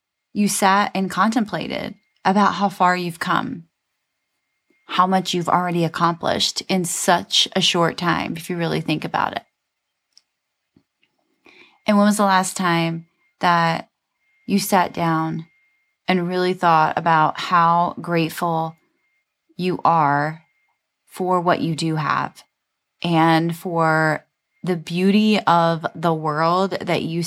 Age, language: 20-39, English